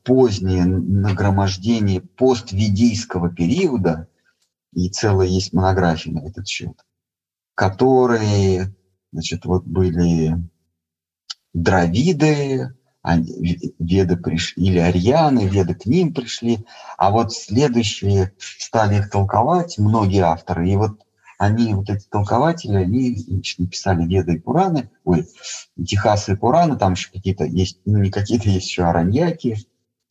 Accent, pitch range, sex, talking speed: native, 90-120 Hz, male, 110 wpm